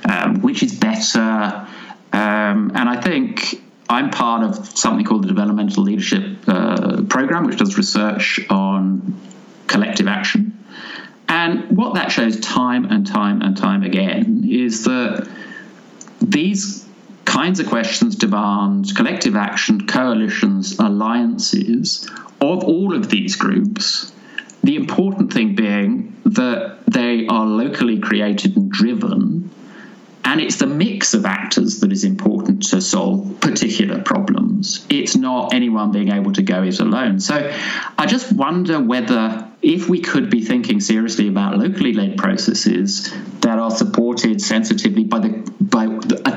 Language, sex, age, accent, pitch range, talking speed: English, male, 50-69, British, 190-225 Hz, 135 wpm